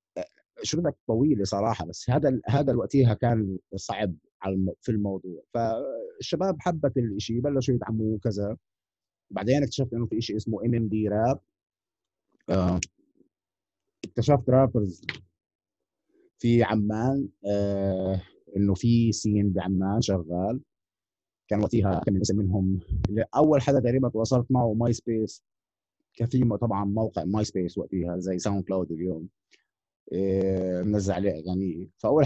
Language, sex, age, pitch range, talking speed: Arabic, male, 30-49, 95-120 Hz, 115 wpm